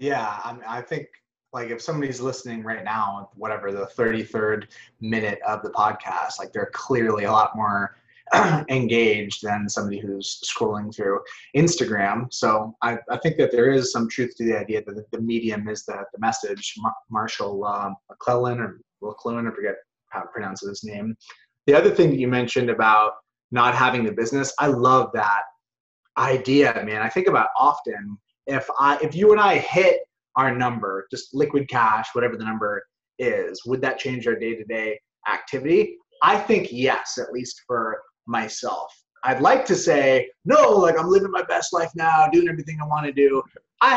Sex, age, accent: male, 30-49, American